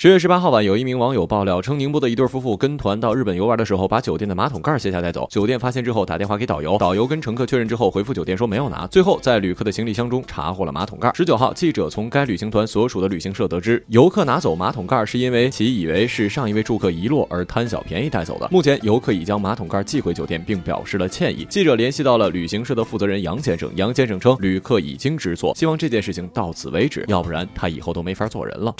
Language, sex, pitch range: Chinese, male, 100-160 Hz